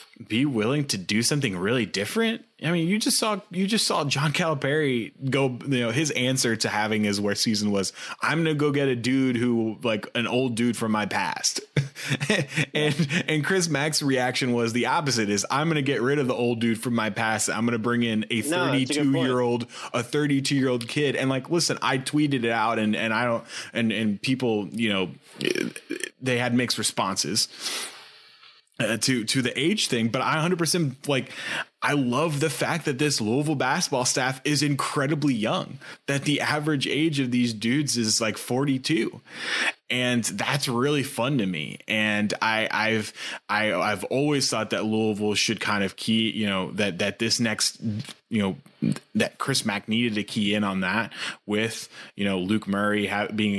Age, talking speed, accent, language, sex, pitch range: 20-39, 195 wpm, American, English, male, 110-145 Hz